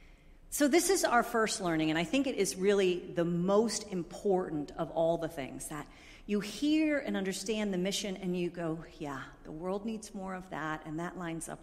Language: English